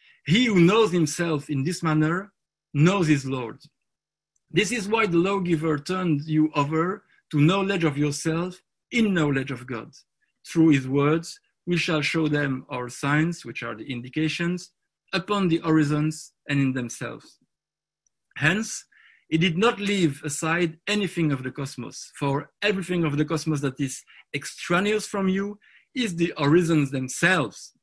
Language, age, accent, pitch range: English, 50-69, French, 145-180 Hz